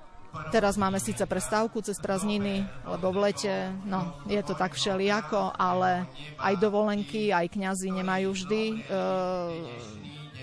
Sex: female